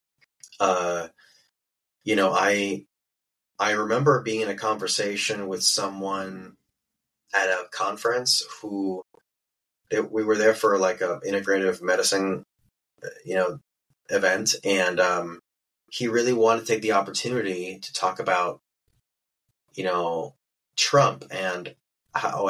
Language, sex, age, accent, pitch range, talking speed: English, male, 30-49, American, 95-110 Hz, 115 wpm